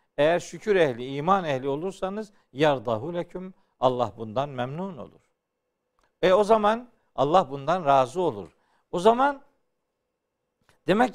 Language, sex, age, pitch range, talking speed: Turkish, male, 50-69, 145-235 Hz, 115 wpm